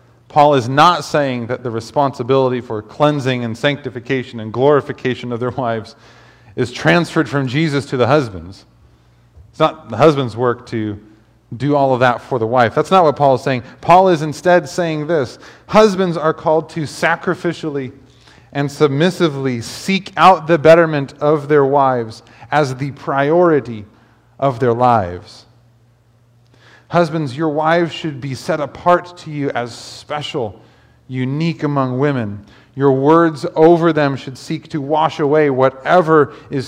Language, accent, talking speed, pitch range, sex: English, American, 150 wpm, 120-160 Hz, male